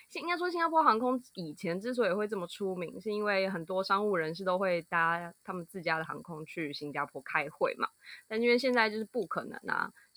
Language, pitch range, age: Chinese, 175-240 Hz, 20-39